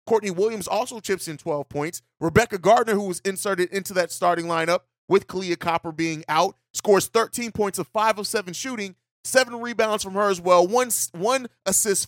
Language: English